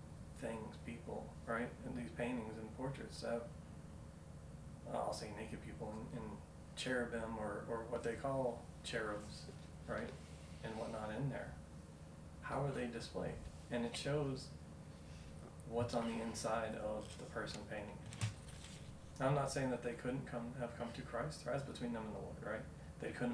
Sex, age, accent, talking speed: male, 30-49, American, 160 wpm